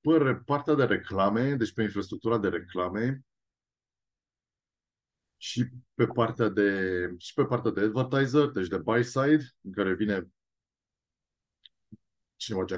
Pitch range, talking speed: 95-135 Hz, 120 wpm